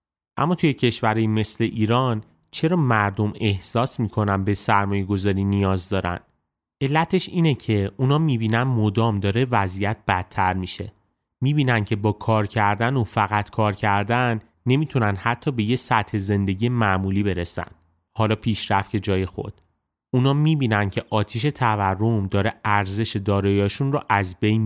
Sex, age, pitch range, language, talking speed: male, 30-49, 100-120 Hz, Persian, 140 wpm